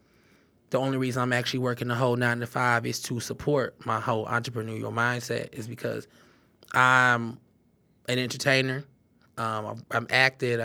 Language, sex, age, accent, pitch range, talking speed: English, male, 20-39, American, 115-125 Hz, 145 wpm